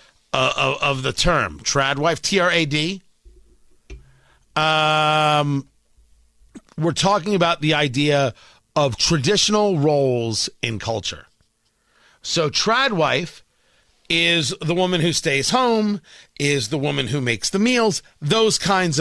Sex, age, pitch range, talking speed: male, 50-69, 140-205 Hz, 115 wpm